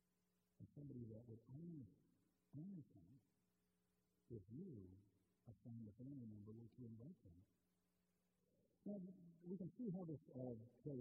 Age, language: 50-69, English